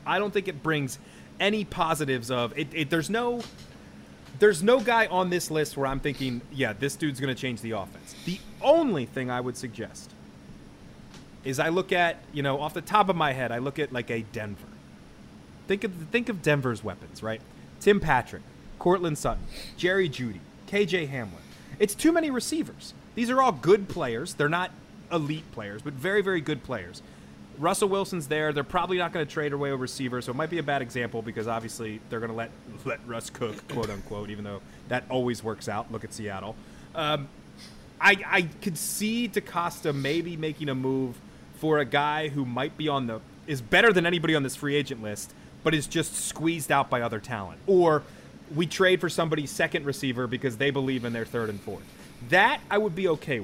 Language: English